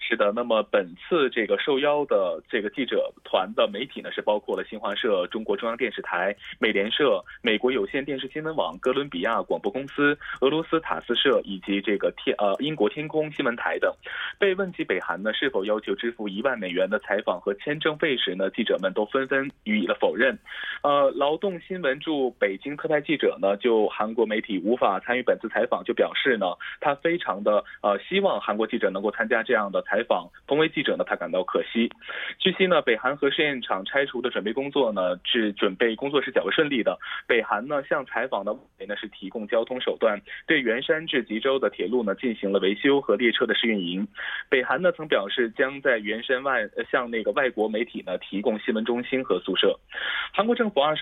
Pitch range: 115-175 Hz